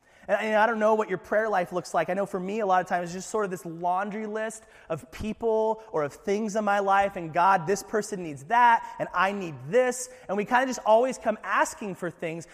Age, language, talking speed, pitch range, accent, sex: 30-49, English, 255 wpm, 180-235 Hz, American, male